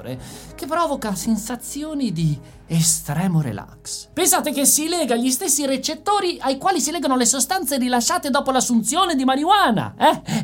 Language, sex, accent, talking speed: Italian, male, native, 145 wpm